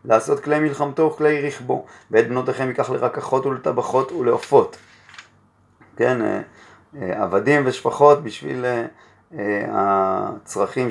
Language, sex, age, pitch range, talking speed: Hebrew, male, 30-49, 105-135 Hz, 90 wpm